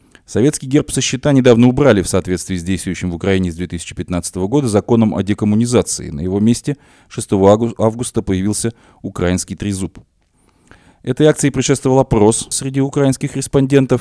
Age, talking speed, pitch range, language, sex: 20-39, 140 wpm, 95-120 Hz, Russian, male